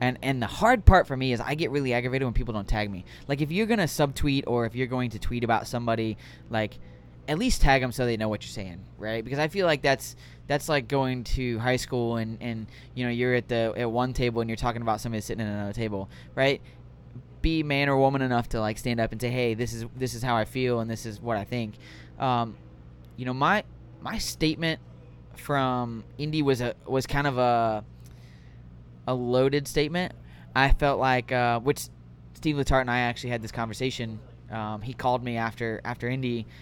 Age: 20-39